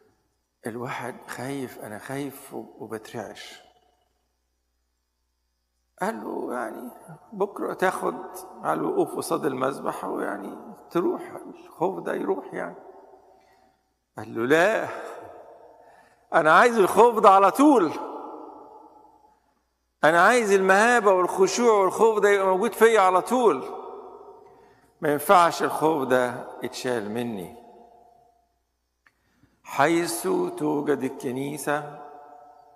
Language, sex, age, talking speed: English, male, 50-69, 90 wpm